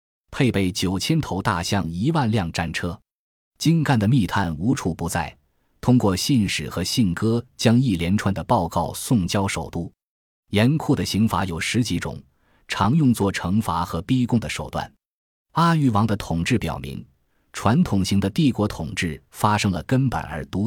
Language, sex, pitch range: Chinese, male, 85-115 Hz